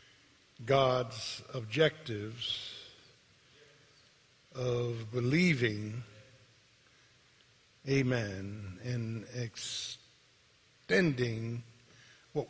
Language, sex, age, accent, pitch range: English, male, 50-69, American, 115-140 Hz